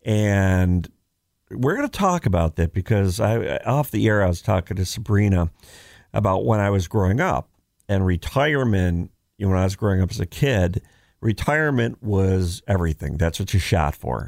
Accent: American